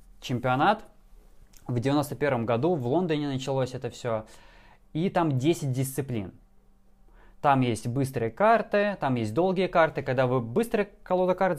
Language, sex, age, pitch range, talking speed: Russian, male, 20-39, 120-165 Hz, 140 wpm